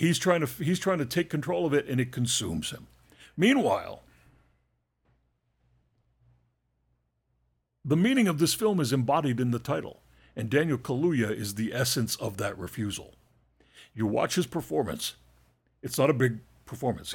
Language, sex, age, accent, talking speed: English, male, 60-79, American, 145 wpm